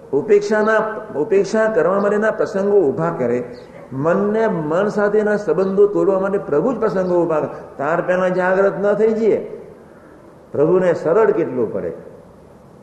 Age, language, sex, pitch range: 60-79, Gujarati, male, 165-210 Hz